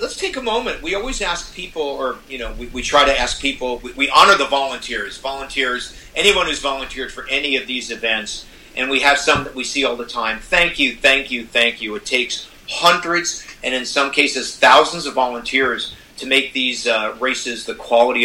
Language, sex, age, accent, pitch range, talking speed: English, male, 40-59, American, 125-170 Hz, 210 wpm